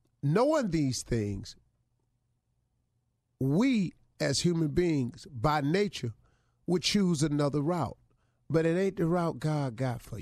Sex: male